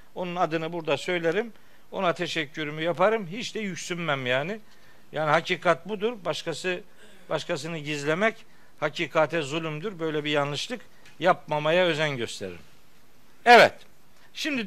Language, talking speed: Turkish, 110 wpm